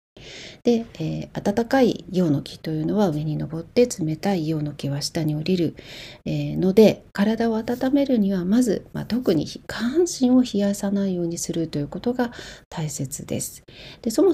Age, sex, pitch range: 40-59, female, 155-225 Hz